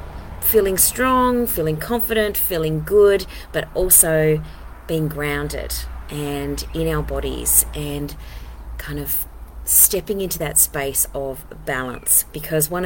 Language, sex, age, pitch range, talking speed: English, female, 30-49, 140-185 Hz, 115 wpm